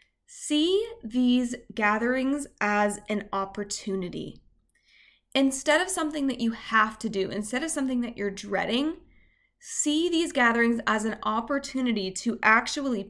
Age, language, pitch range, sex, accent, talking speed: 20-39, English, 215-275 Hz, female, American, 130 wpm